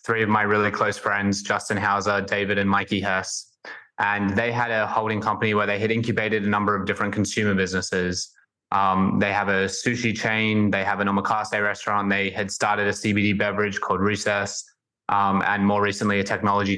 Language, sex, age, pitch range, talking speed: English, male, 20-39, 100-110 Hz, 190 wpm